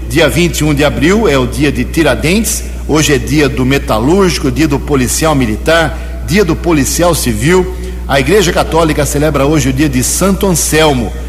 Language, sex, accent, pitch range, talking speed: Portuguese, male, Brazilian, 115-155 Hz, 170 wpm